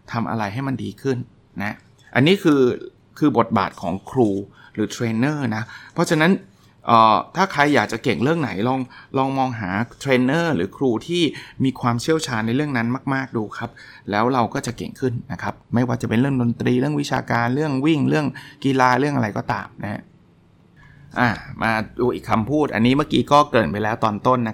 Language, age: Thai, 30-49